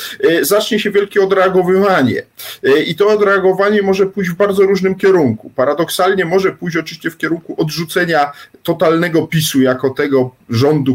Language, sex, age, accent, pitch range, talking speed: Polish, male, 40-59, native, 145-190 Hz, 135 wpm